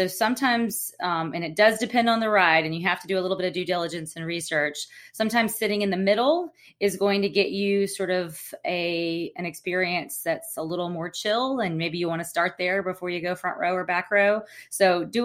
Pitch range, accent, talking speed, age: 160-195 Hz, American, 230 wpm, 20-39